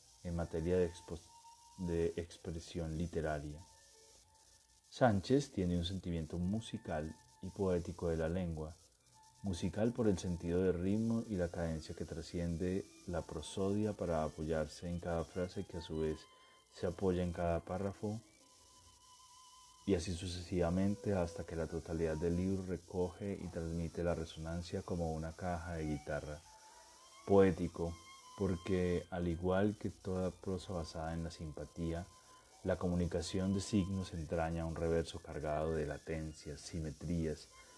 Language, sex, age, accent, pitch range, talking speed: Spanish, male, 30-49, Argentinian, 85-100 Hz, 135 wpm